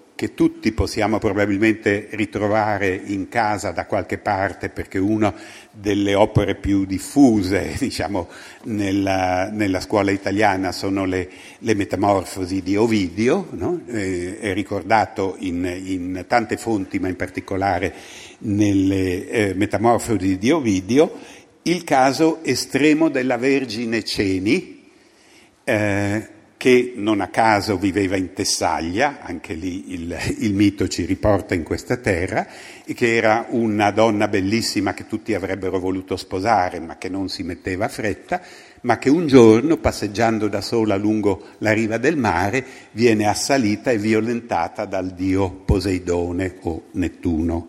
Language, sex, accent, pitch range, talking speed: Italian, male, native, 95-115 Hz, 135 wpm